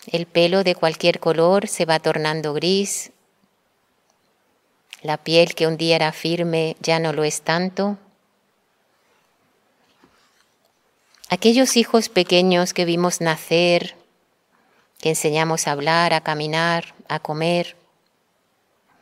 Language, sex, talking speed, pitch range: Spanish, female, 110 wpm, 165-185 Hz